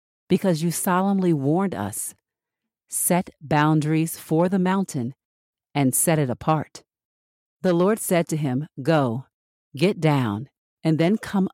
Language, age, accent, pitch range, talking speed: English, 50-69, American, 140-175 Hz, 130 wpm